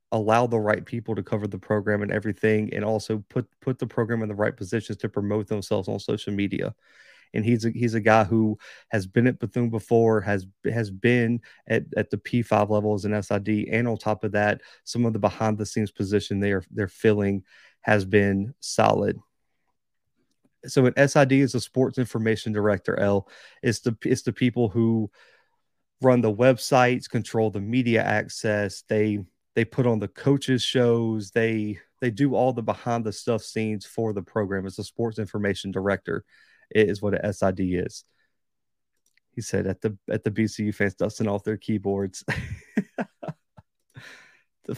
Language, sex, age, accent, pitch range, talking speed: English, male, 30-49, American, 105-120 Hz, 175 wpm